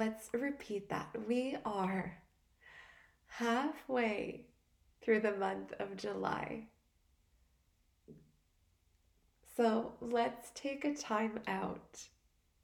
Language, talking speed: English, 80 wpm